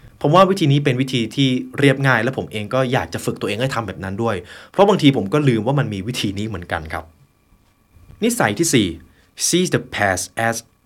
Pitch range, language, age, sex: 95-140 Hz, Thai, 20-39, male